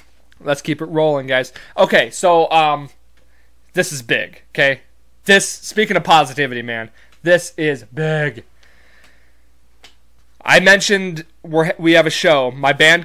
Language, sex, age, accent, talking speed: English, male, 20-39, American, 135 wpm